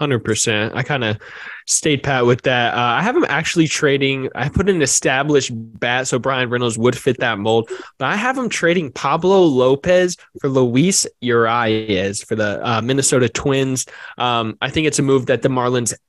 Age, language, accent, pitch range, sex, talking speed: 20-39, English, American, 120-145 Hz, male, 190 wpm